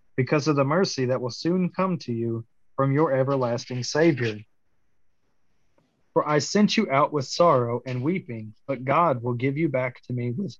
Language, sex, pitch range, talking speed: English, male, 125-155 Hz, 180 wpm